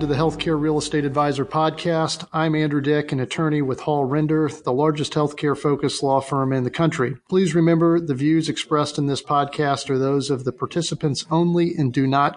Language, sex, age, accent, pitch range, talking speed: English, male, 40-59, American, 130-155 Hz, 195 wpm